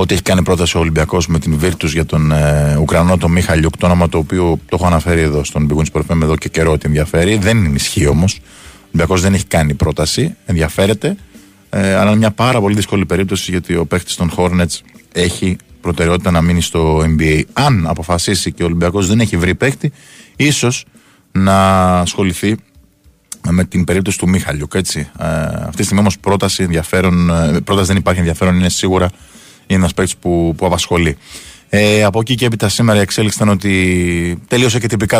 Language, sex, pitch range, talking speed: Greek, male, 85-100 Hz, 190 wpm